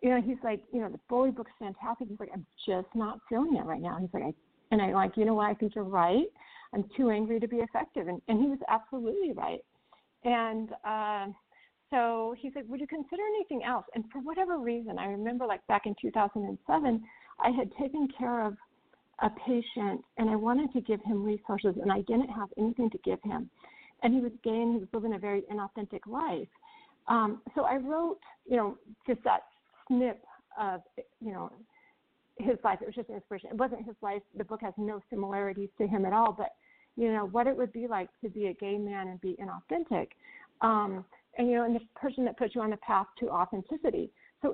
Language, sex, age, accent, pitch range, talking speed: English, female, 50-69, American, 205-255 Hz, 220 wpm